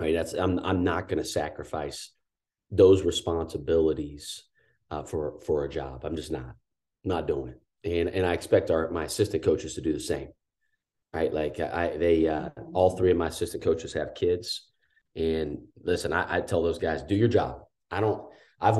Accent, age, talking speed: American, 30-49, 190 wpm